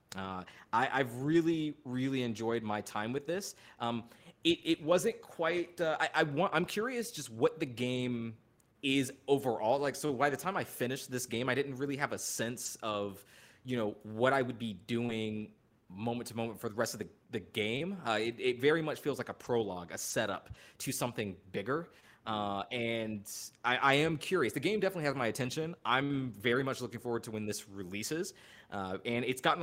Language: English